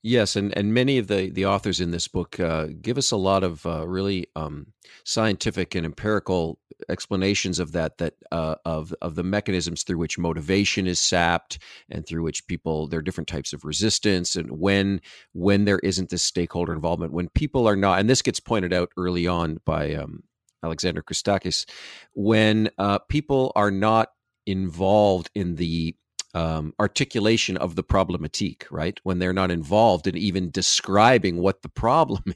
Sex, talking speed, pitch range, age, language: male, 175 wpm, 85-100 Hz, 50-69, English